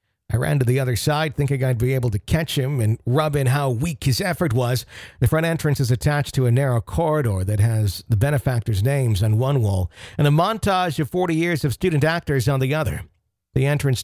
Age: 50-69